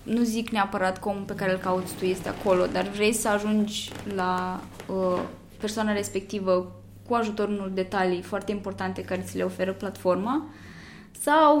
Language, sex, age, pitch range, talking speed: Romanian, female, 20-39, 185-225 Hz, 155 wpm